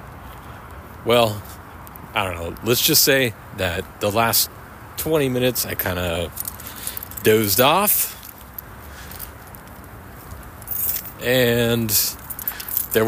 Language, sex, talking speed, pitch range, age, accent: English, male, 85 wpm, 85-115 Hz, 50-69, American